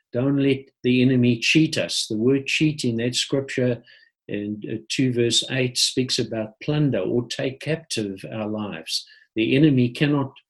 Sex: male